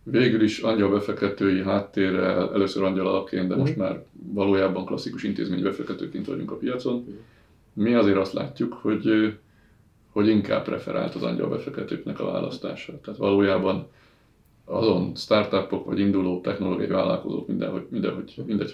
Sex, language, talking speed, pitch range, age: male, Hungarian, 130 wpm, 95-115 Hz, 30-49